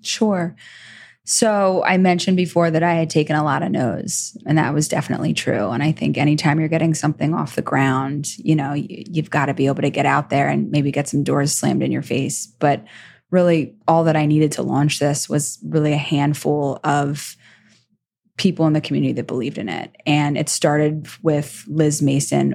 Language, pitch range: English, 145-160 Hz